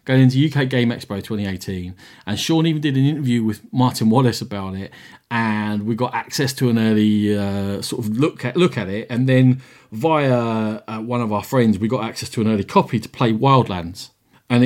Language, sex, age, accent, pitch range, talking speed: English, male, 40-59, British, 105-140 Hz, 210 wpm